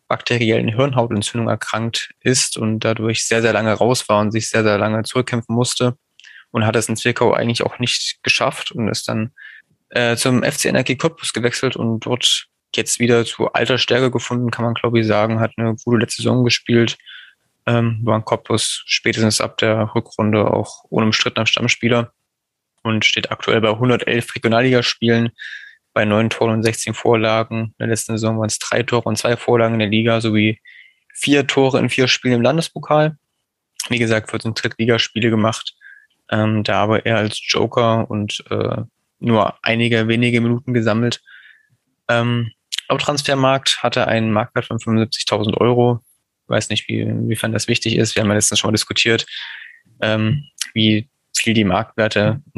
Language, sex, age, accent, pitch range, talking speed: German, male, 20-39, German, 110-120 Hz, 170 wpm